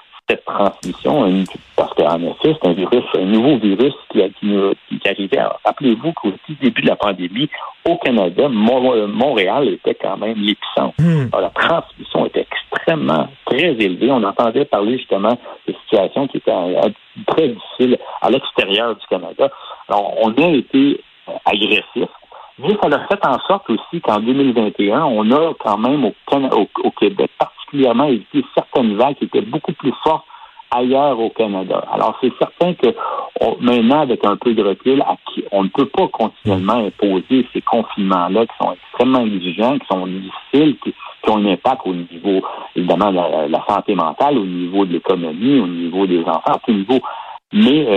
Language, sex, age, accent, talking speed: French, male, 60-79, French, 170 wpm